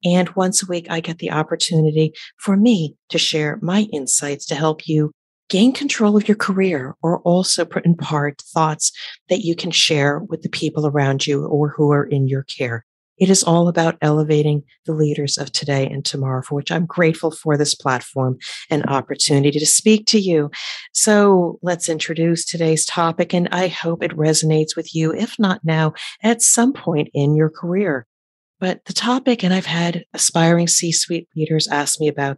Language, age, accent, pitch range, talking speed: English, 40-59, American, 150-190 Hz, 185 wpm